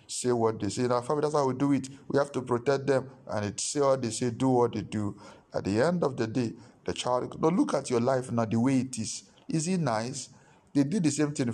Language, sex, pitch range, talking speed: English, male, 115-135 Hz, 275 wpm